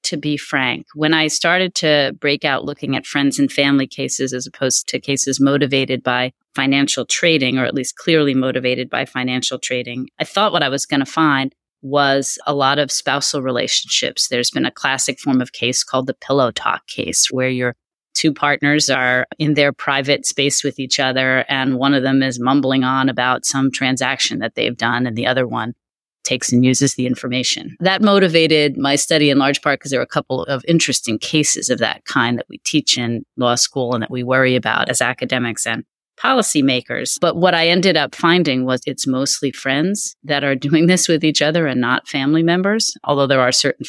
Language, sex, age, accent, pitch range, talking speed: English, female, 30-49, American, 130-150 Hz, 205 wpm